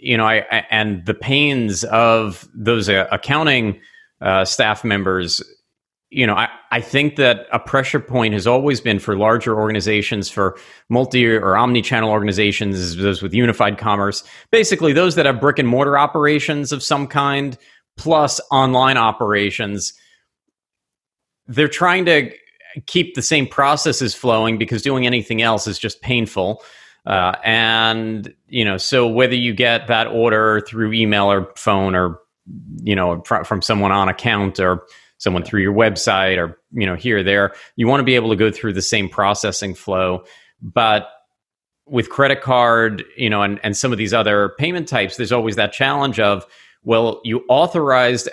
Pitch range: 100-125 Hz